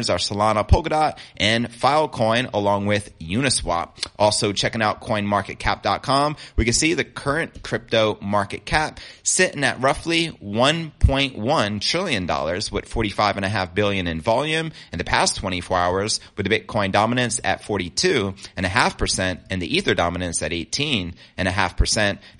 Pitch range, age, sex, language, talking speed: 95-120 Hz, 30-49, male, English, 125 wpm